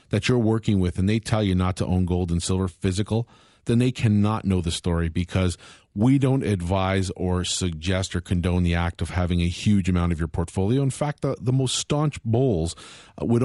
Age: 40-59